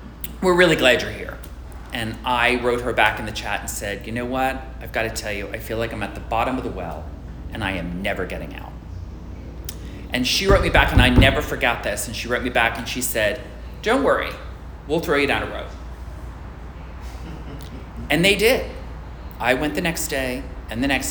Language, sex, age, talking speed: English, male, 30-49, 215 wpm